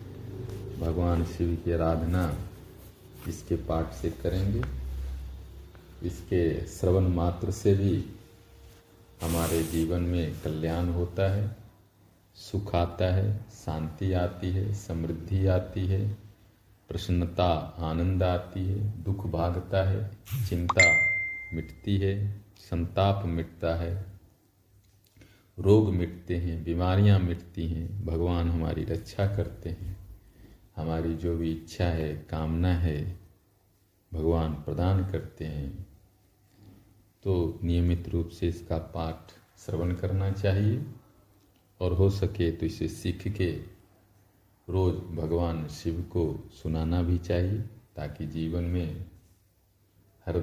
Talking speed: 105 wpm